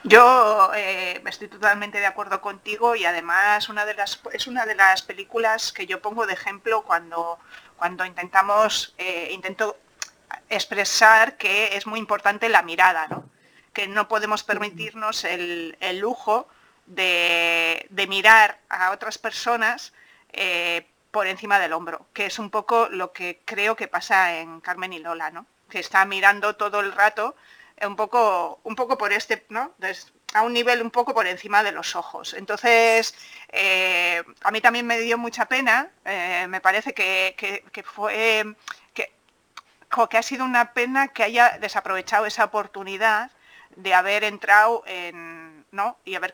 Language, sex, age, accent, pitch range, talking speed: Spanish, female, 30-49, Spanish, 185-220 Hz, 160 wpm